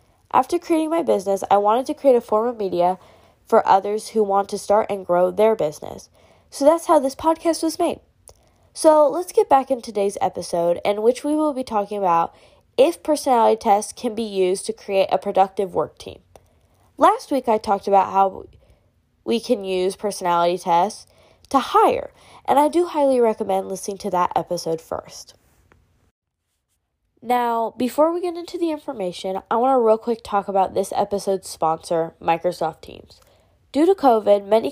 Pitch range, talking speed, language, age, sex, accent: 190-260 Hz, 175 wpm, Greek, 10-29, female, American